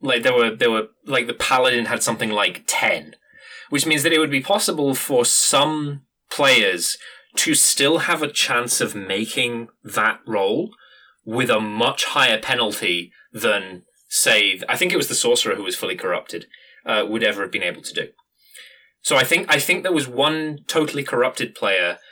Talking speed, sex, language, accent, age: 180 wpm, male, English, British, 20-39